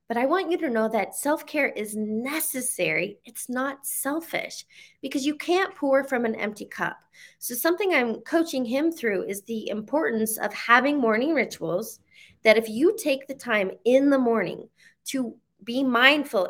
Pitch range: 210-270 Hz